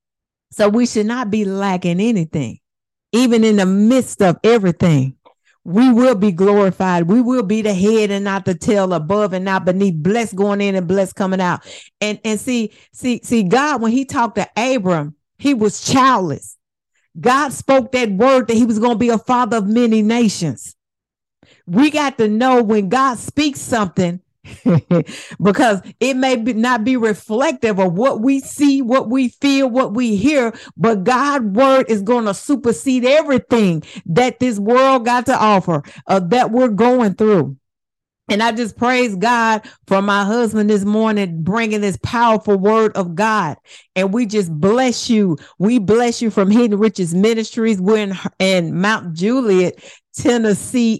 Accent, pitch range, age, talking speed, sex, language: American, 195-245 Hz, 50-69, 165 wpm, female, English